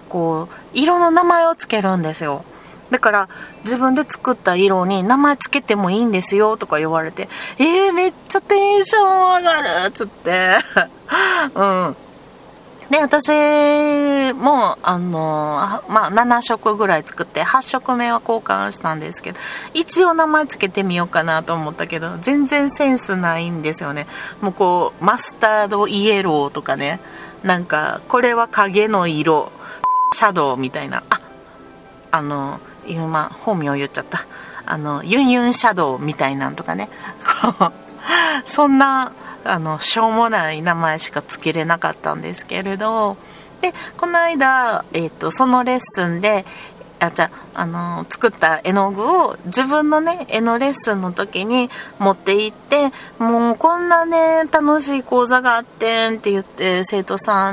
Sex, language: female, Japanese